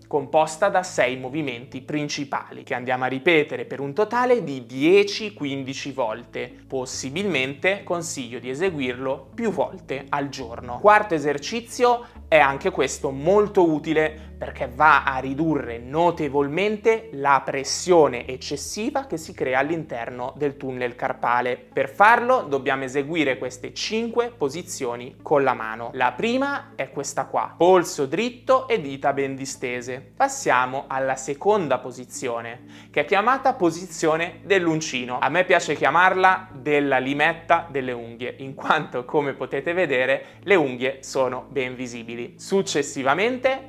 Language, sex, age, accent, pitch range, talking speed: Italian, male, 20-39, native, 130-195 Hz, 130 wpm